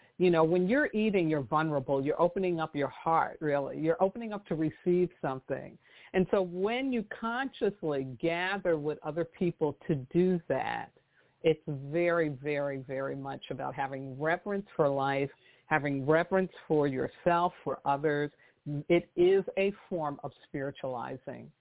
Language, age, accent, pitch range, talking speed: English, 50-69, American, 145-185 Hz, 145 wpm